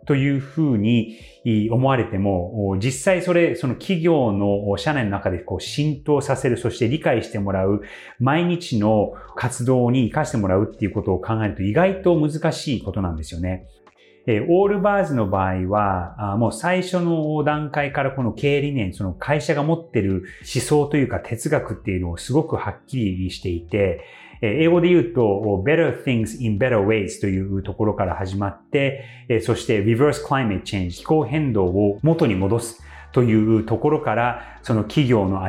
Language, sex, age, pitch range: Japanese, male, 30-49, 100-150 Hz